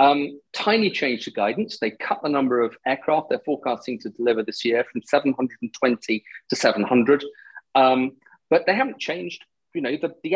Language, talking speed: English, 175 wpm